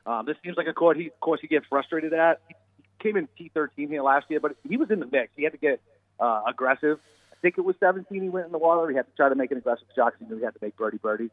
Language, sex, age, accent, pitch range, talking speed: English, male, 40-59, American, 115-150 Hz, 320 wpm